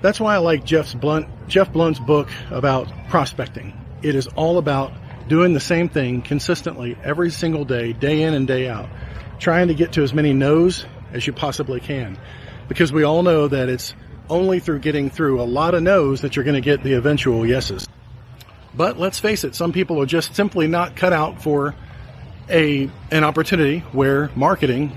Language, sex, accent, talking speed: English, male, American, 190 wpm